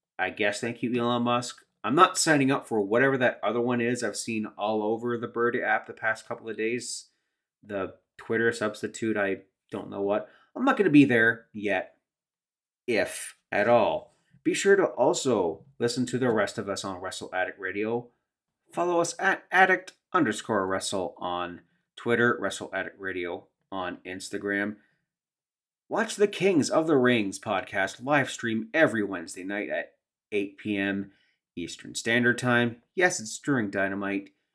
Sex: male